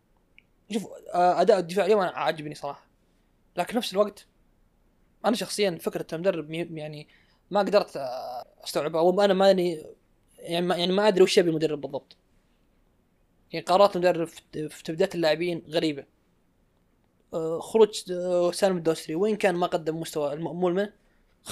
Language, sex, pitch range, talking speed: Arabic, male, 160-195 Hz, 130 wpm